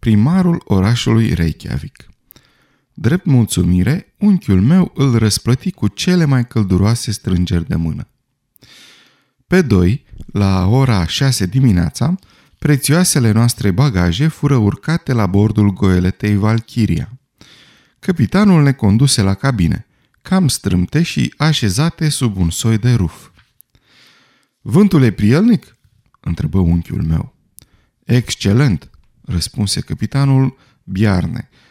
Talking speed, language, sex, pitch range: 105 wpm, Romanian, male, 100-145 Hz